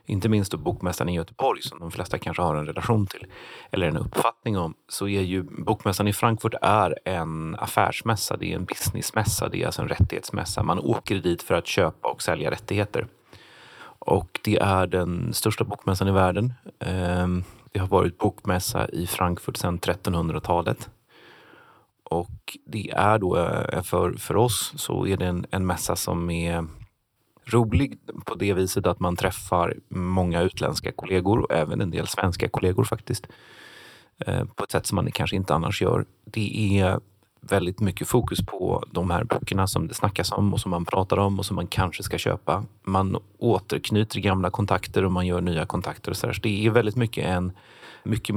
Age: 30-49